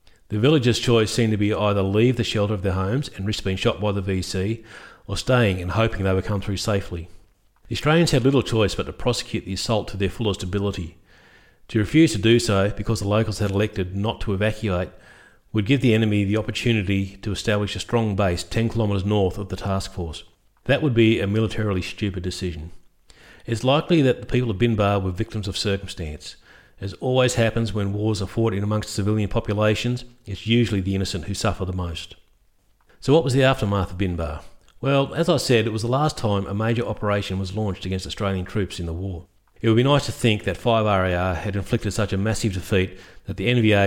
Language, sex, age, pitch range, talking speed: English, male, 40-59, 95-115 Hz, 215 wpm